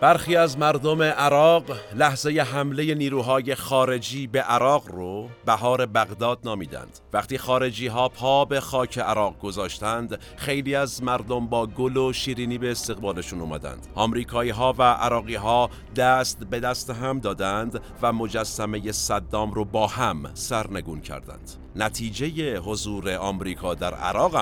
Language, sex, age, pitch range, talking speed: Persian, male, 50-69, 95-125 Hz, 135 wpm